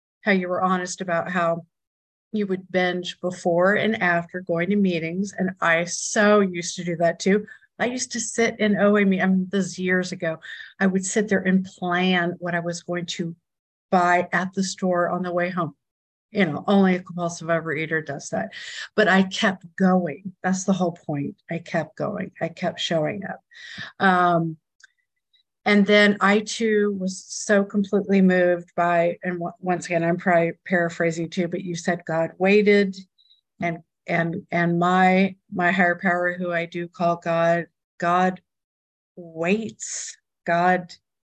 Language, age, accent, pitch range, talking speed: English, 50-69, American, 170-200 Hz, 165 wpm